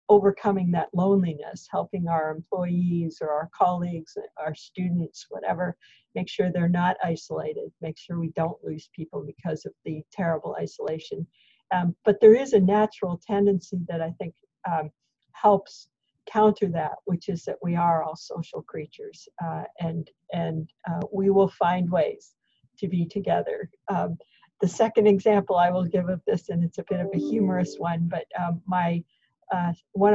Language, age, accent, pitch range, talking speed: English, 50-69, American, 170-200 Hz, 165 wpm